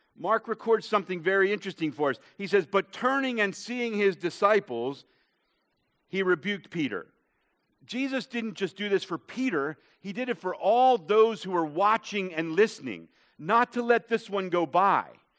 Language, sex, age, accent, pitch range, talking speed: English, male, 50-69, American, 150-215 Hz, 170 wpm